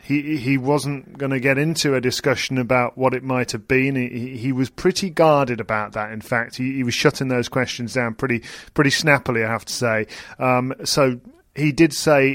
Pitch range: 120-140 Hz